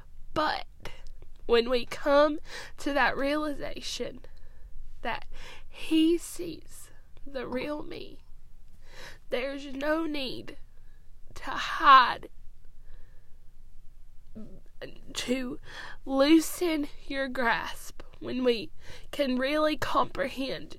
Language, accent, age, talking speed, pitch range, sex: English, American, 10-29, 80 wpm, 245-295 Hz, female